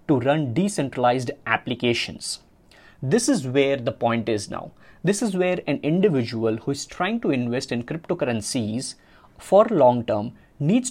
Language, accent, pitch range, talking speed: English, Indian, 135-175 Hz, 145 wpm